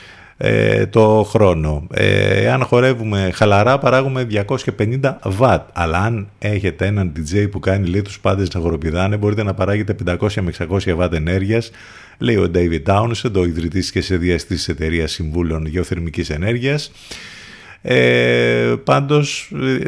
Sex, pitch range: male, 85-110 Hz